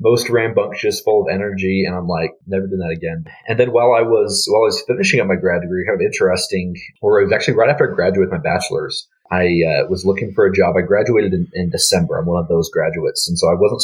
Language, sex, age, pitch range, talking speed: English, male, 30-49, 85-100 Hz, 260 wpm